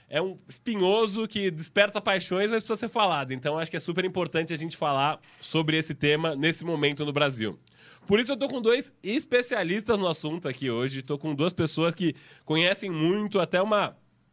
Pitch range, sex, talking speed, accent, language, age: 150-185 Hz, male, 195 wpm, Brazilian, Portuguese, 20-39